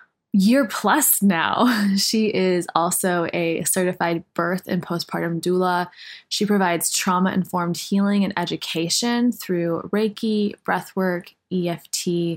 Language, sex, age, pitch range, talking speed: English, female, 20-39, 170-195 Hz, 105 wpm